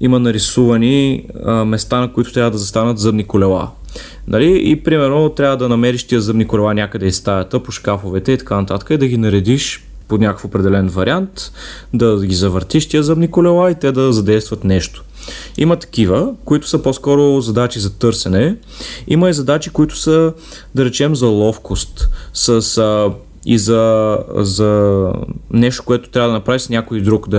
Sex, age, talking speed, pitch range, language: male, 30-49, 170 wpm, 100-125 Hz, Bulgarian